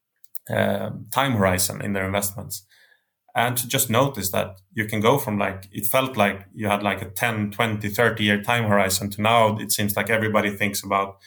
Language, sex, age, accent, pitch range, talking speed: English, male, 20-39, Norwegian, 100-110 Hz, 195 wpm